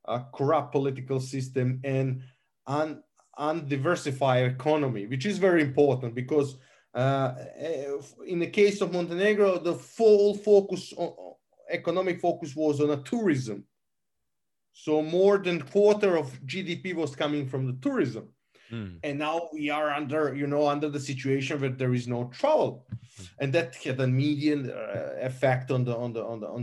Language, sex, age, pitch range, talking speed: English, male, 30-49, 130-160 Hz, 160 wpm